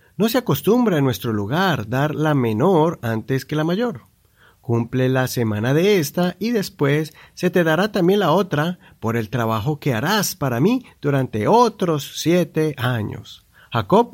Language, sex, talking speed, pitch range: Spanish, male, 160 wpm, 120-175 Hz